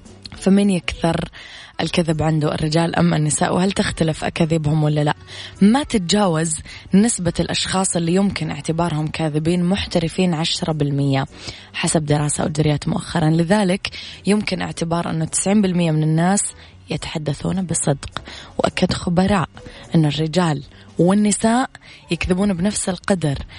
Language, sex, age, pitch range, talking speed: Arabic, female, 20-39, 155-185 Hz, 110 wpm